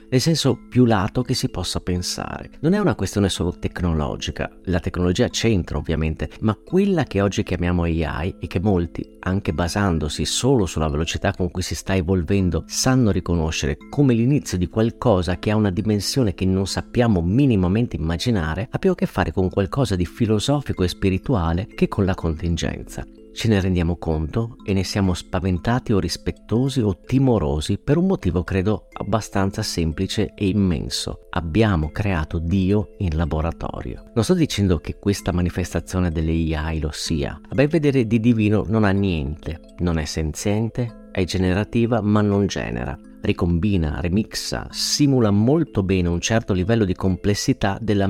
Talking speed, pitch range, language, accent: 160 wpm, 85-110 Hz, Italian, native